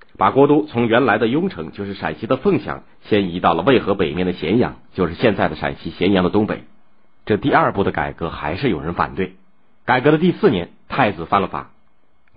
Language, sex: Chinese, male